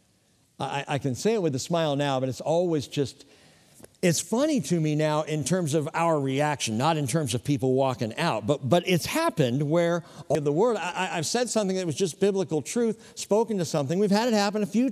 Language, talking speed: English, 225 wpm